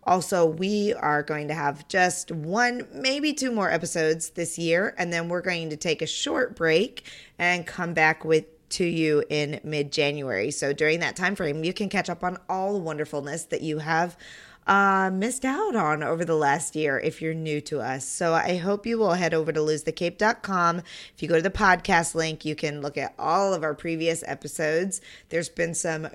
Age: 20-39